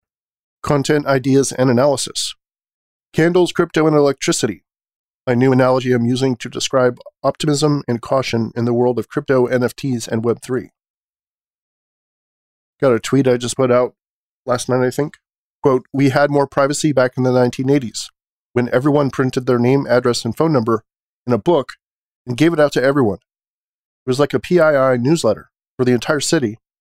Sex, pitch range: male, 120-140 Hz